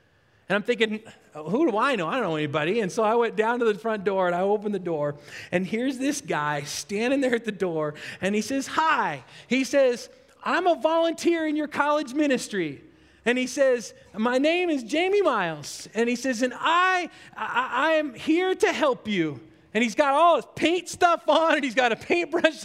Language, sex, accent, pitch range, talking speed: English, male, American, 215-295 Hz, 210 wpm